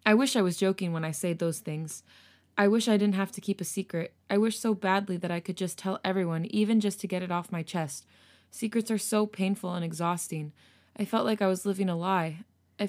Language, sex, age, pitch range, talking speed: English, female, 20-39, 170-205 Hz, 240 wpm